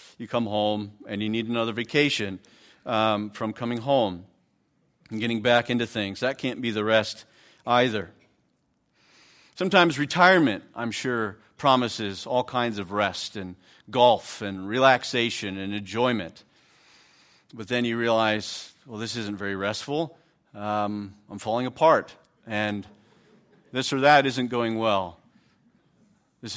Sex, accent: male, American